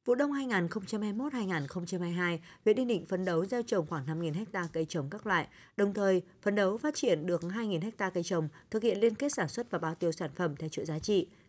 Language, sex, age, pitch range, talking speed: Vietnamese, female, 20-39, 170-230 Hz, 220 wpm